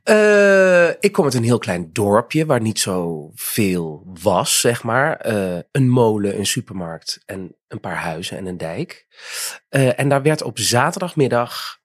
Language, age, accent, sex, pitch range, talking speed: Dutch, 30-49, Dutch, male, 120-170 Hz, 165 wpm